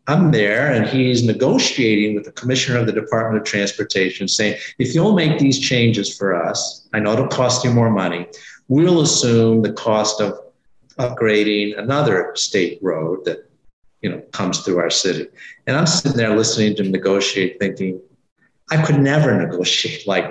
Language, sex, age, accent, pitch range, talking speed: English, male, 50-69, American, 105-140 Hz, 170 wpm